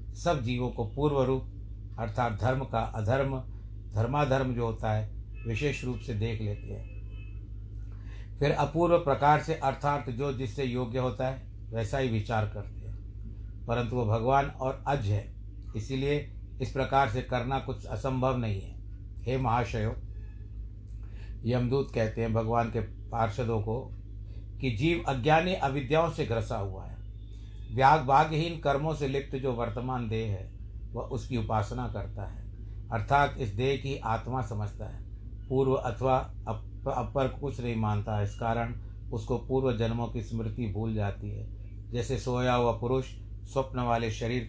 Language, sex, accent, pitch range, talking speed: Hindi, male, native, 105-130 Hz, 150 wpm